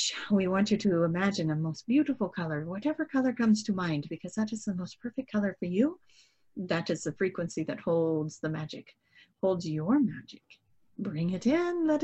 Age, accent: 40-59, American